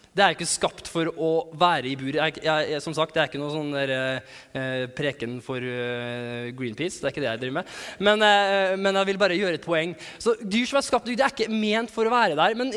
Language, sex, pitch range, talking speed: English, male, 170-215 Hz, 245 wpm